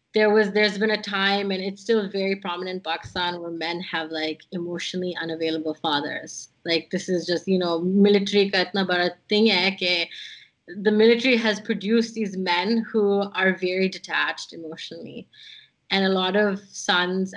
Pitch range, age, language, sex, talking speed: 175-200 Hz, 20-39, English, female, 150 wpm